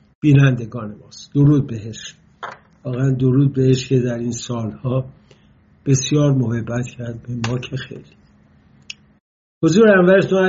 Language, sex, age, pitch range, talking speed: English, male, 60-79, 120-155 Hz, 115 wpm